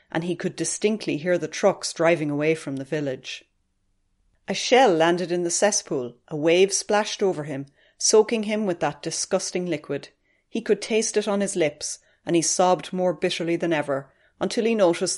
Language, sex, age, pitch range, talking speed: English, female, 30-49, 155-195 Hz, 180 wpm